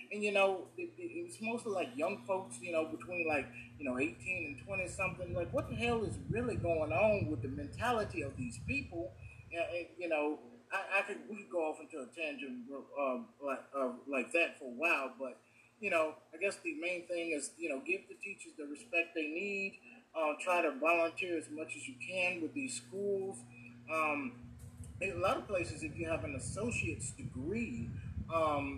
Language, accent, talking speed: English, American, 200 wpm